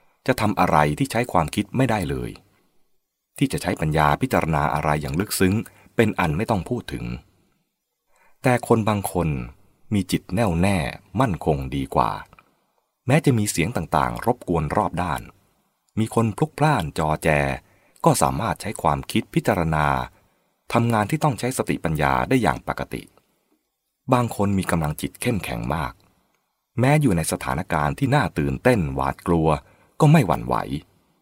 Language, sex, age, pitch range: English, male, 30-49, 75-120 Hz